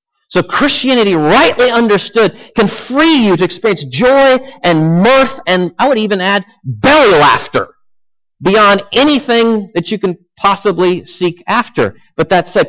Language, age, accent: English, 40-59, American